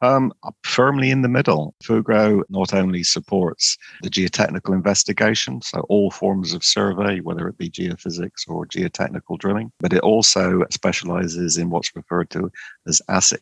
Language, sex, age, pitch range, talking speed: English, male, 50-69, 85-95 Hz, 155 wpm